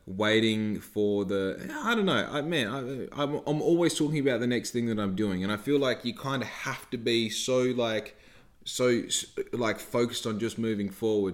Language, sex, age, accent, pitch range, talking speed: English, male, 20-39, Australian, 105-120 Hz, 210 wpm